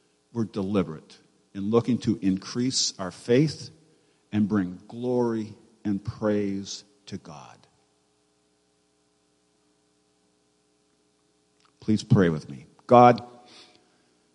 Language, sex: English, male